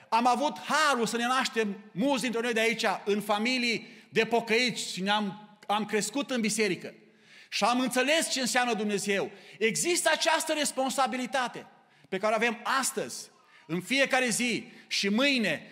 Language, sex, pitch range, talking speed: Romanian, male, 190-250 Hz, 155 wpm